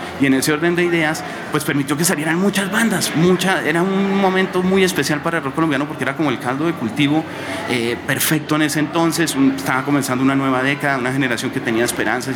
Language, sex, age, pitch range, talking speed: Spanish, male, 30-49, 125-165 Hz, 220 wpm